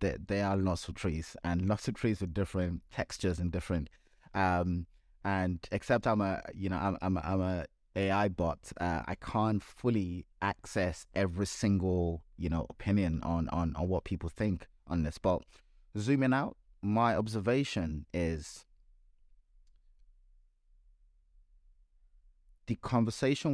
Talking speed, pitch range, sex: 140 wpm, 80-100 Hz, male